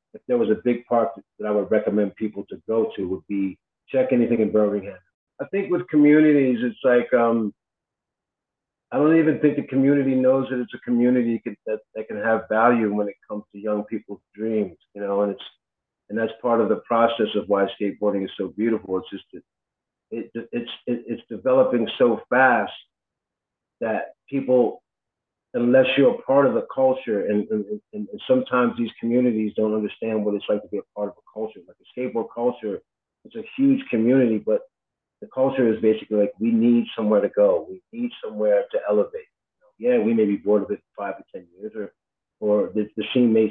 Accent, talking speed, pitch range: American, 195 wpm, 110-150 Hz